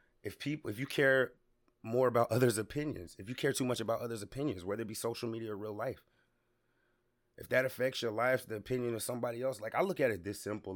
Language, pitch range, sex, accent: English, 100-120 Hz, male, American